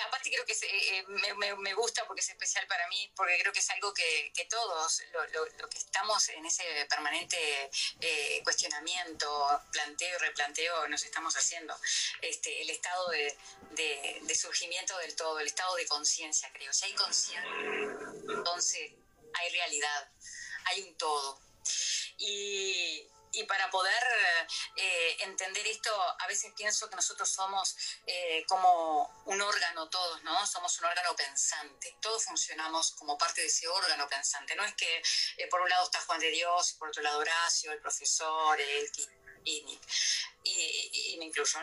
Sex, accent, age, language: female, Argentinian, 20-39, Spanish